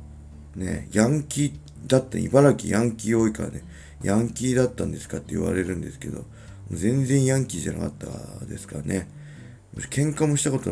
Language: Japanese